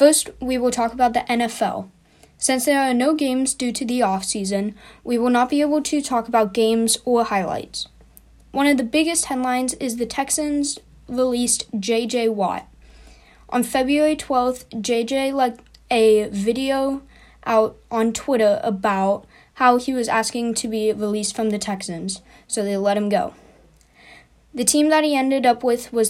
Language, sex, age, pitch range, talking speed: English, female, 20-39, 215-255 Hz, 165 wpm